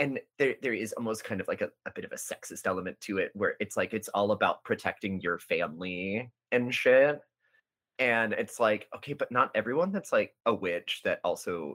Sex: male